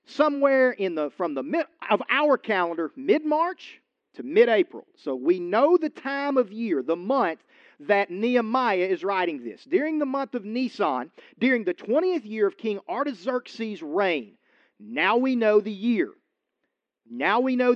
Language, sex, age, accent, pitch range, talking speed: English, male, 40-59, American, 210-315 Hz, 165 wpm